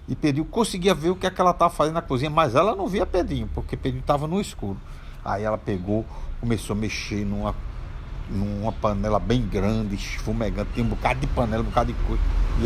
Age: 60-79